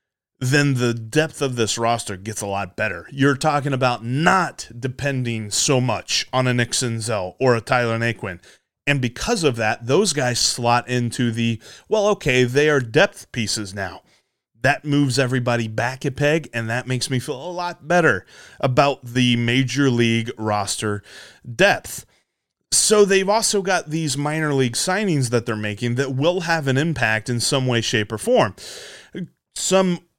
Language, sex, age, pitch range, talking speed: English, male, 30-49, 115-150 Hz, 165 wpm